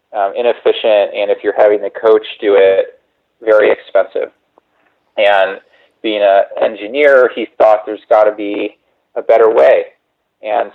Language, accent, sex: English, American, male